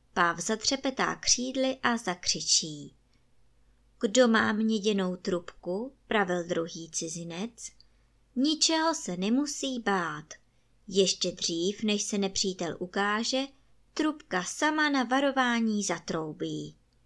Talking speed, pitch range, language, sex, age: 95 wpm, 170-245 Hz, Czech, male, 20-39